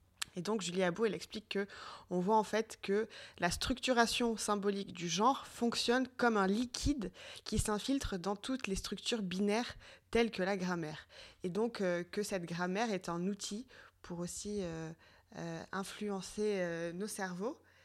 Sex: female